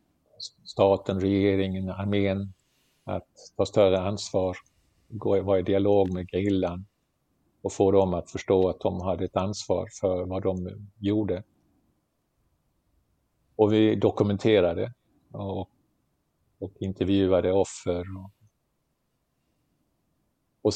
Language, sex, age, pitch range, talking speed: Swedish, male, 50-69, 95-105 Hz, 100 wpm